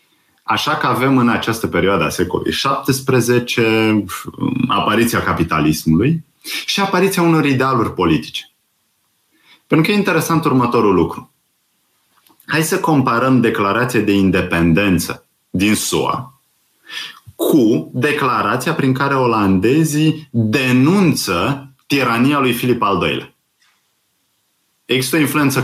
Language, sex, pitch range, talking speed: Romanian, male, 100-140 Hz, 105 wpm